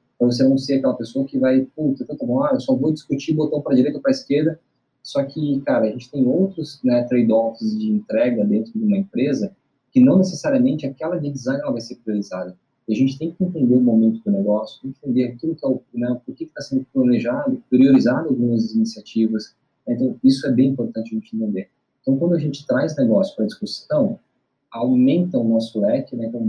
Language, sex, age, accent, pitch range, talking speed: Portuguese, male, 20-39, Brazilian, 115-175 Hz, 210 wpm